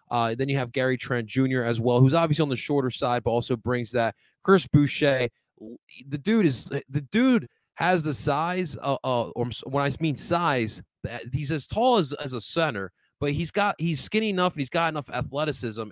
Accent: American